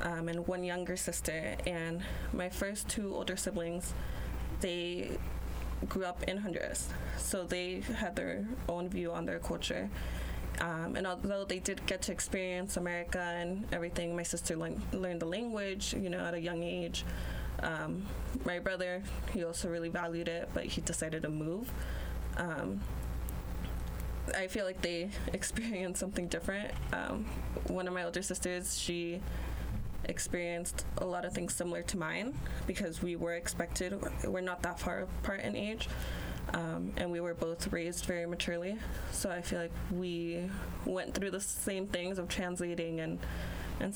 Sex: female